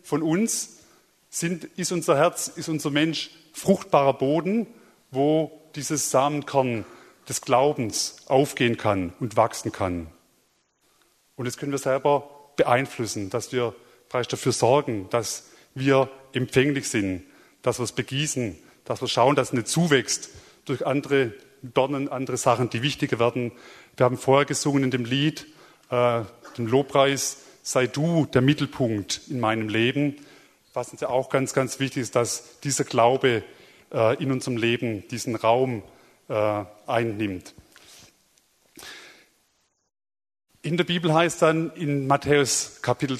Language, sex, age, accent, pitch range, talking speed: German, male, 30-49, German, 120-150 Hz, 140 wpm